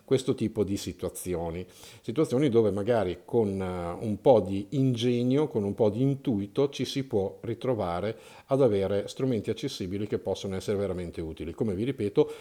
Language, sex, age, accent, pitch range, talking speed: Italian, male, 50-69, native, 100-140 Hz, 160 wpm